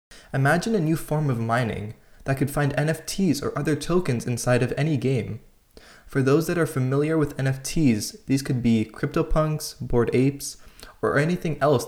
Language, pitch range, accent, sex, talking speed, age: English, 120-150 Hz, American, male, 165 wpm, 20-39